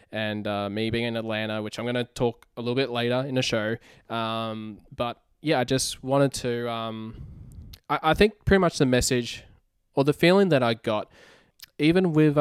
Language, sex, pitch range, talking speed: English, male, 115-145 Hz, 200 wpm